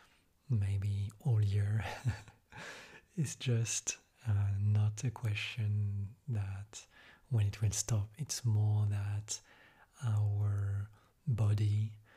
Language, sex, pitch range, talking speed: English, male, 105-115 Hz, 95 wpm